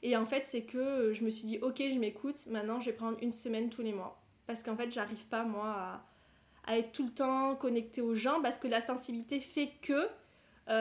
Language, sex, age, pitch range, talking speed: French, female, 20-39, 220-270 Hz, 235 wpm